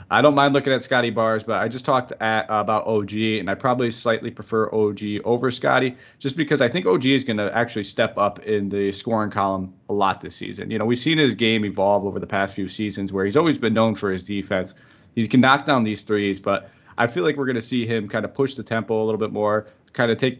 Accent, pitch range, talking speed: American, 105-125 Hz, 260 wpm